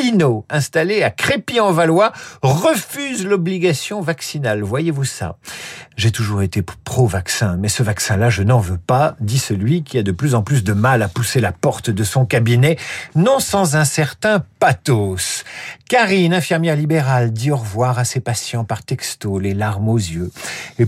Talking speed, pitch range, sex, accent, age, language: 170 wpm, 115-175 Hz, male, French, 50-69, French